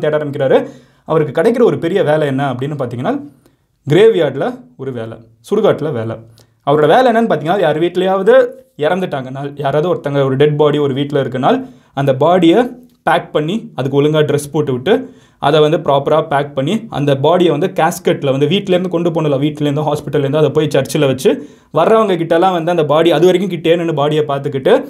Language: Tamil